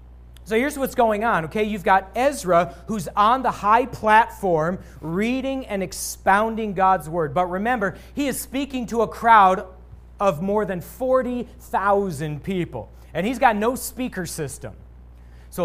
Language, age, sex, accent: English, 40-59, male, American